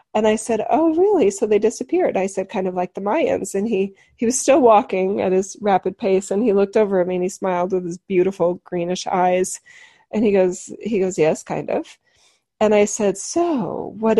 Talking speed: 220 wpm